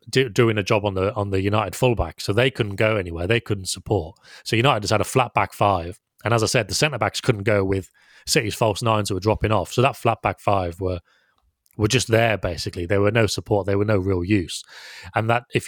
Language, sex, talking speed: English, male, 245 wpm